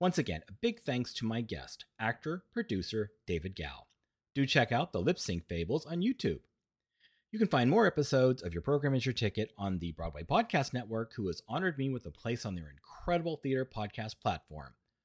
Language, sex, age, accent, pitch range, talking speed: English, male, 30-49, American, 95-140 Hz, 200 wpm